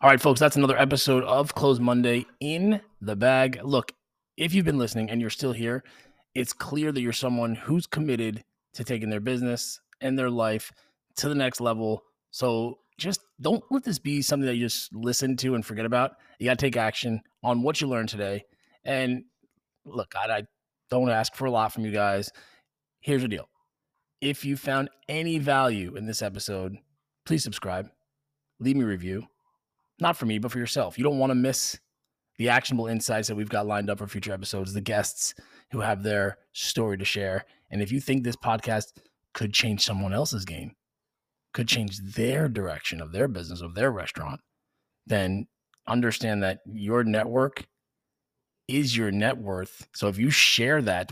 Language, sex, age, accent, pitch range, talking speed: English, male, 20-39, American, 105-135 Hz, 185 wpm